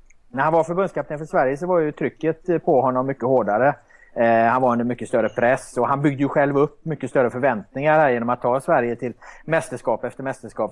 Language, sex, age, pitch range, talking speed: Swedish, male, 30-49, 115-145 Hz, 220 wpm